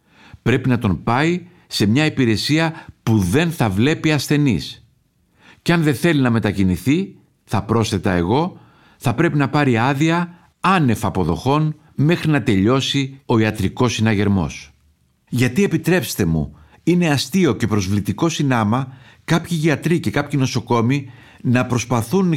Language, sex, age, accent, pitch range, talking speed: Greek, male, 50-69, native, 110-150 Hz, 130 wpm